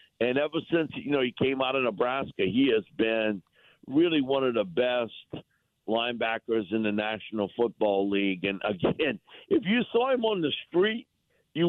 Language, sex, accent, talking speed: English, male, American, 175 wpm